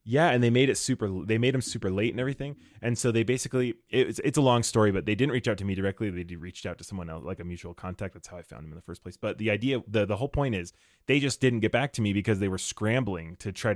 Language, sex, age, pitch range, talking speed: English, male, 20-39, 95-125 Hz, 315 wpm